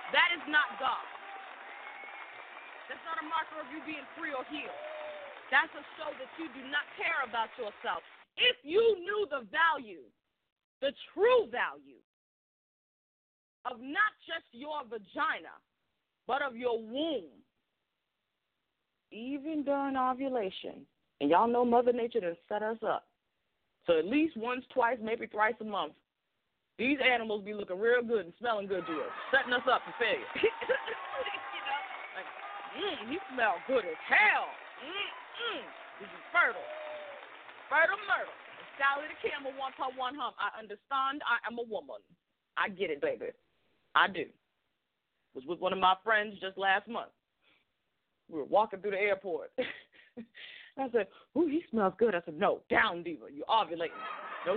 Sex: female